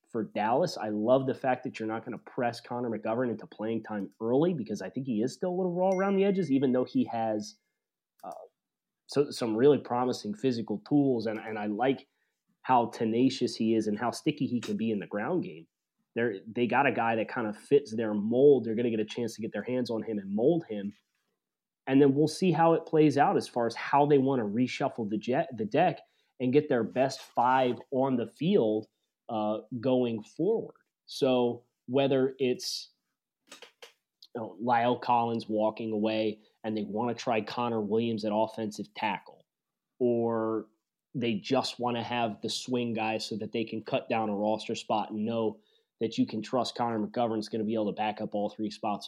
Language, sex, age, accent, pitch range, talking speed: English, male, 30-49, American, 110-130 Hz, 210 wpm